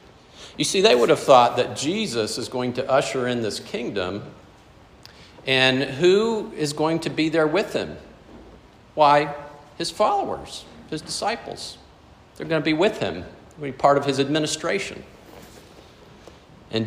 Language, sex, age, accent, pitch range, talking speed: English, male, 50-69, American, 100-145 Hz, 145 wpm